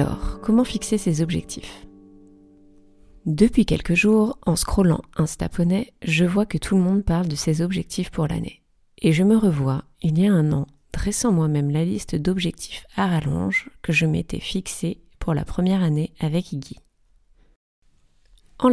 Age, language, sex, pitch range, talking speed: 30-49, French, female, 155-195 Hz, 160 wpm